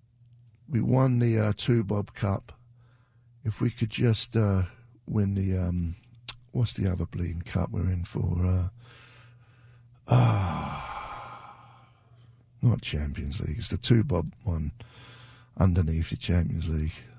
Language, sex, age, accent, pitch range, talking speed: English, male, 60-79, British, 90-120 Hz, 120 wpm